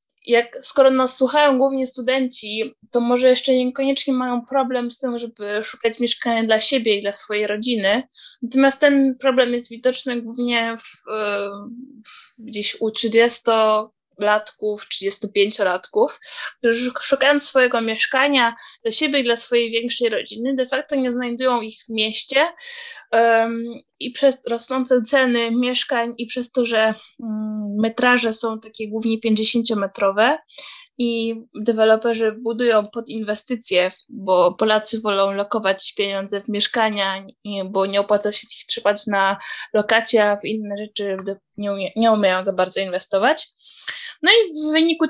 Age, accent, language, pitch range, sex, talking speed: 20-39, Polish, English, 215-255 Hz, female, 135 wpm